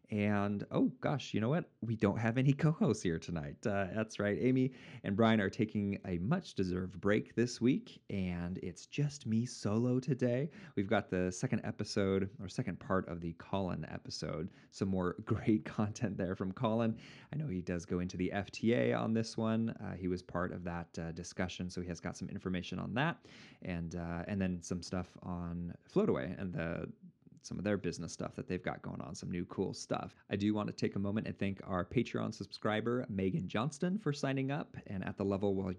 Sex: male